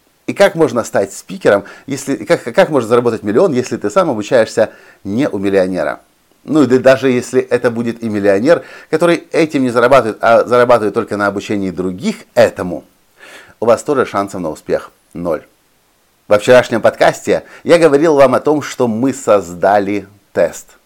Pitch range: 100-135 Hz